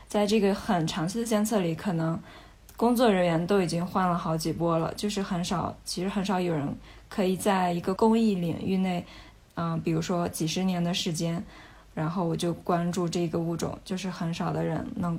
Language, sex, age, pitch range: Chinese, female, 20-39, 170-195 Hz